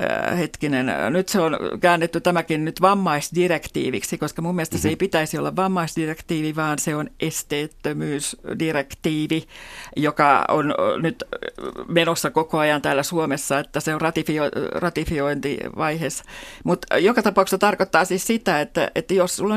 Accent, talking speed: native, 130 wpm